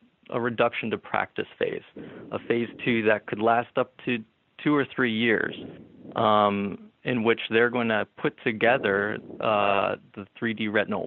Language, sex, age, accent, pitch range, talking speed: English, male, 20-39, American, 100-125 Hz, 155 wpm